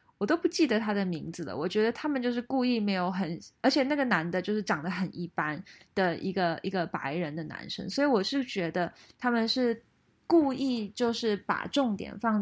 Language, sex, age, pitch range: Chinese, female, 20-39, 185-230 Hz